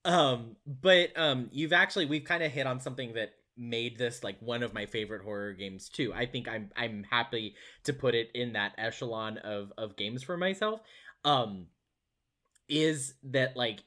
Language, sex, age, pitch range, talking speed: English, male, 20-39, 110-145 Hz, 180 wpm